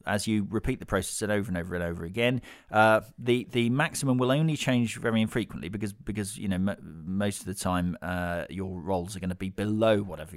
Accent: British